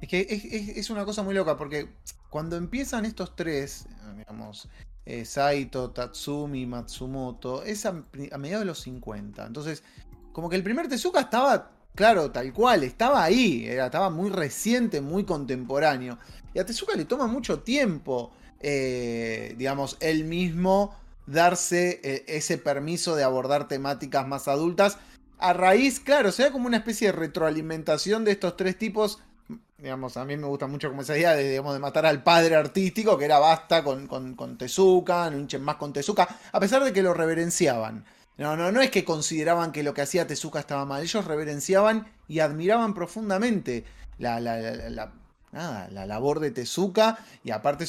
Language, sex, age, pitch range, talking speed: Spanish, male, 20-39, 140-195 Hz, 175 wpm